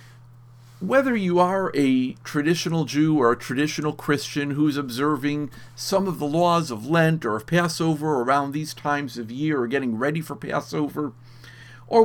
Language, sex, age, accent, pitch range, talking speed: English, male, 50-69, American, 125-175 Hz, 160 wpm